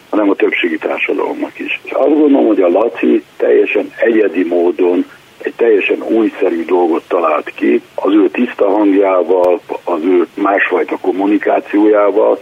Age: 60-79